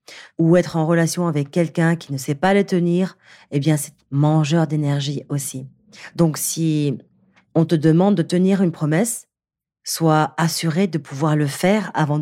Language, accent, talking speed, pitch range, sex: French, French, 165 wpm, 145-180 Hz, female